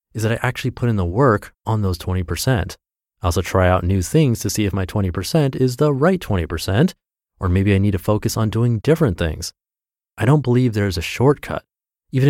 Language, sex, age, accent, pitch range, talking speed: English, male, 30-49, American, 90-125 Hz, 210 wpm